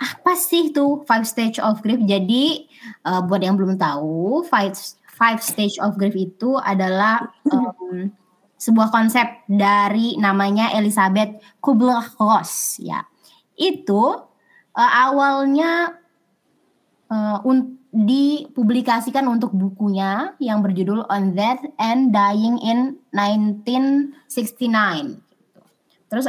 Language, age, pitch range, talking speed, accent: Indonesian, 20-39, 205-265 Hz, 105 wpm, native